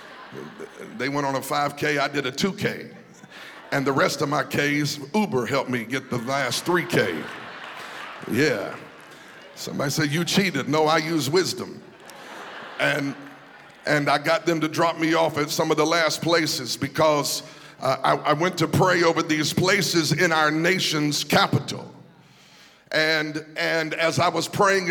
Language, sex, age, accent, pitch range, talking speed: English, male, 50-69, American, 150-170 Hz, 160 wpm